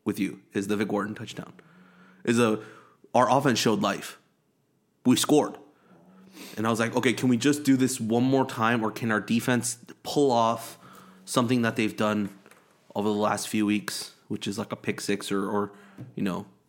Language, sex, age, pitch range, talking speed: English, male, 30-49, 105-125 Hz, 190 wpm